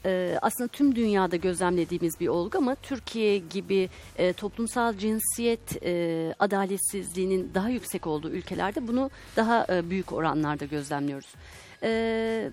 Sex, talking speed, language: female, 125 wpm, Turkish